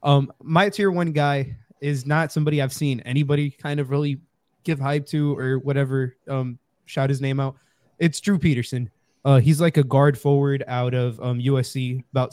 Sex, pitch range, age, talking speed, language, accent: male, 135-160 Hz, 20-39, 185 wpm, English, American